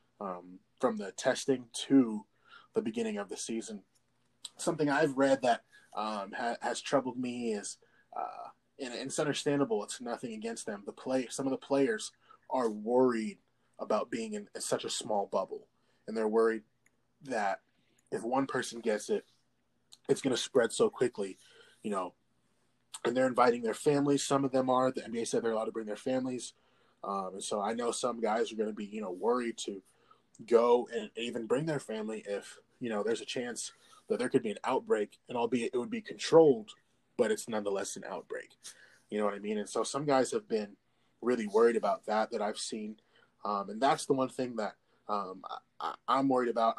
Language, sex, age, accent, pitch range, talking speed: English, male, 20-39, American, 110-145 Hz, 195 wpm